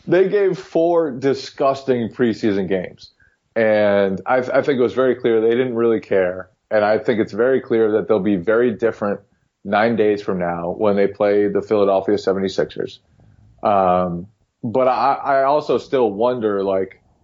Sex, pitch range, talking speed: male, 100-120 Hz, 165 wpm